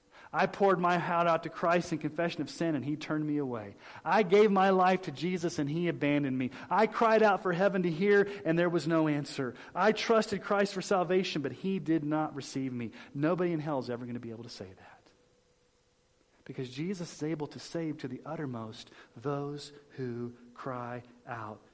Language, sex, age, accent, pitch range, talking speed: English, male, 40-59, American, 120-165 Hz, 205 wpm